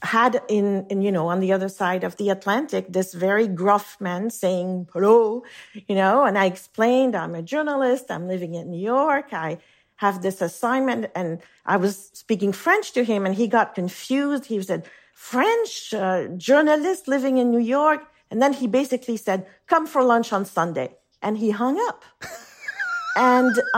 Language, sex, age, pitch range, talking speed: English, female, 50-69, 190-240 Hz, 175 wpm